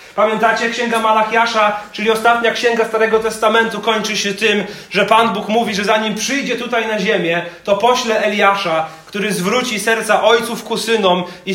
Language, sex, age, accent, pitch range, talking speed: Polish, male, 30-49, native, 195-230 Hz, 160 wpm